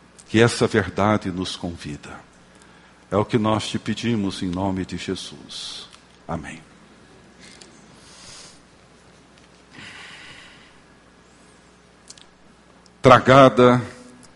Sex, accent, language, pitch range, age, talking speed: male, Brazilian, Portuguese, 80-125 Hz, 60-79, 70 wpm